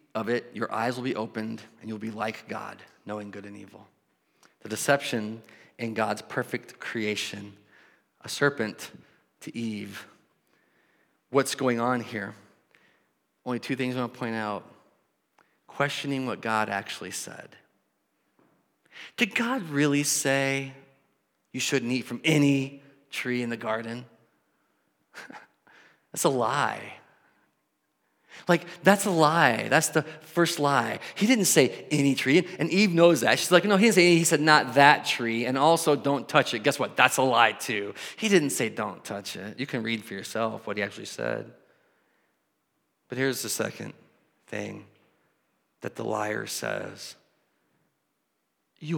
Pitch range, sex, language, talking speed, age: 110-150 Hz, male, English, 150 wpm, 40-59